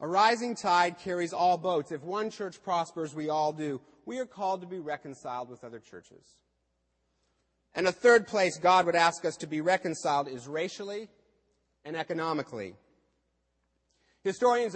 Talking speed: 155 wpm